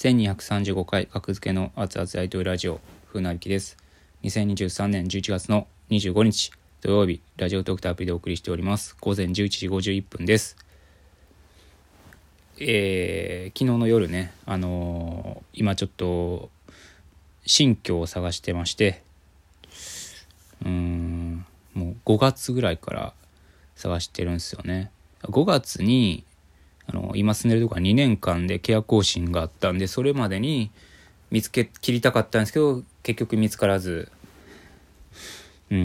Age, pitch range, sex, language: 20-39, 85-105 Hz, male, Japanese